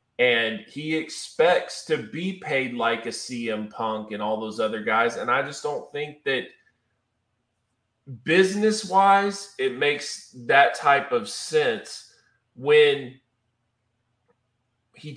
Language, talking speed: English, 120 wpm